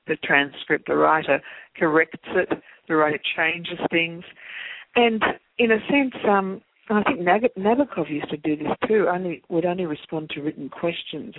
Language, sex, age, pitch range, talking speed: English, female, 60-79, 150-185 Hz, 165 wpm